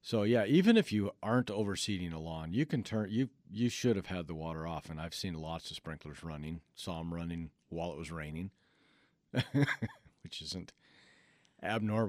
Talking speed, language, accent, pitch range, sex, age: 185 wpm, English, American, 80-115 Hz, male, 50-69